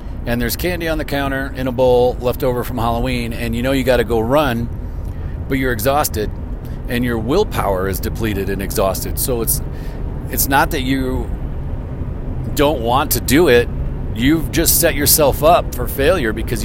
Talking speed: 180 wpm